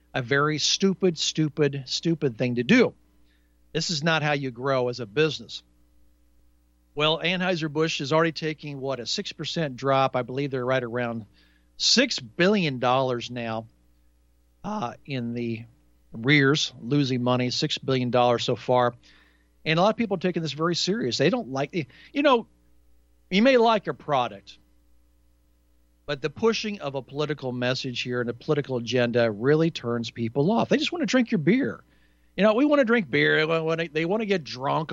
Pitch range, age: 110-150 Hz, 50-69